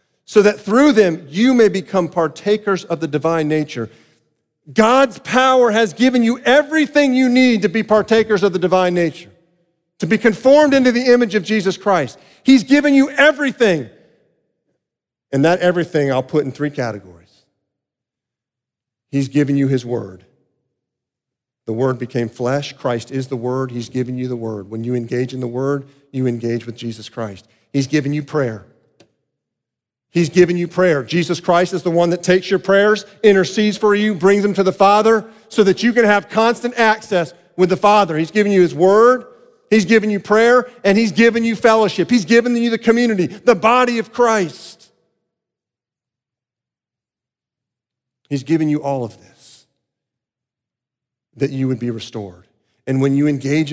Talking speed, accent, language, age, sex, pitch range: 170 wpm, American, English, 40-59, male, 130-215 Hz